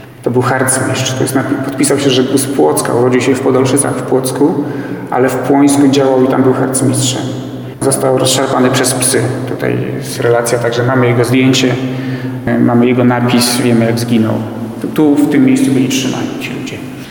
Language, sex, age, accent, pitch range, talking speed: Polish, male, 40-59, native, 125-135 Hz, 170 wpm